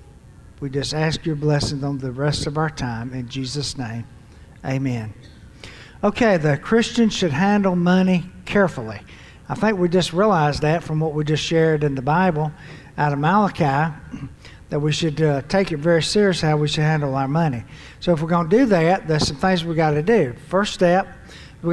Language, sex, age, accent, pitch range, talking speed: English, male, 60-79, American, 150-185 Hz, 195 wpm